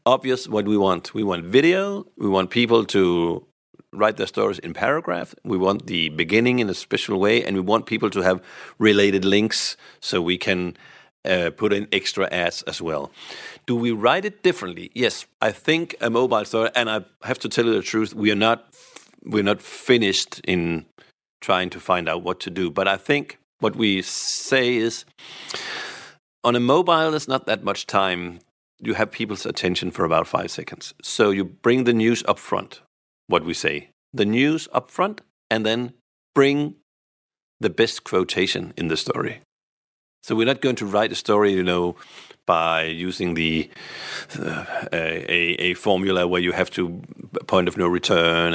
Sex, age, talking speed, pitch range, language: male, 50-69, 180 wpm, 90-125 Hz, Dutch